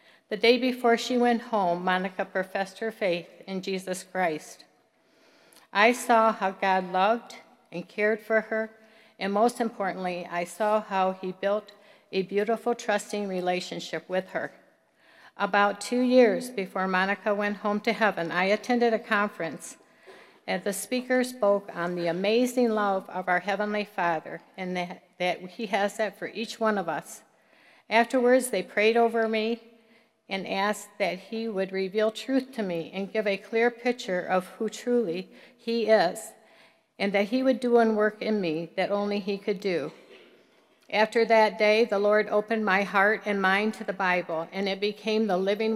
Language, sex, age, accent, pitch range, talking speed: English, female, 60-79, American, 190-225 Hz, 170 wpm